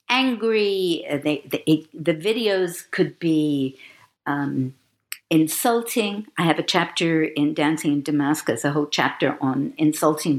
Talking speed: 125 wpm